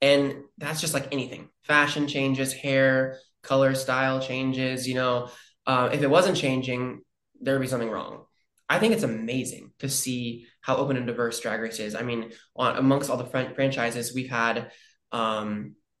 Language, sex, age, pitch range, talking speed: English, male, 20-39, 120-140 Hz, 165 wpm